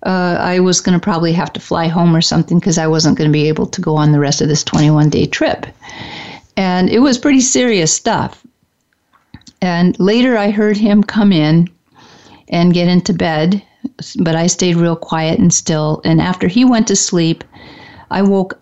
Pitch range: 170-200 Hz